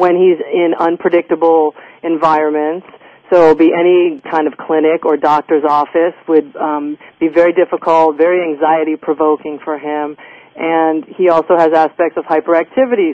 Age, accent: 40-59, American